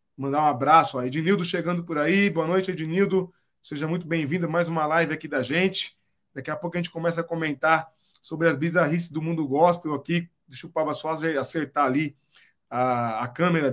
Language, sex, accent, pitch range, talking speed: Portuguese, male, Brazilian, 150-195 Hz, 200 wpm